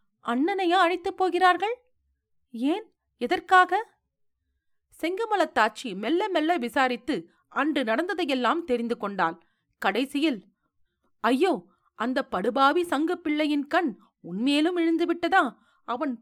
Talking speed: 85 wpm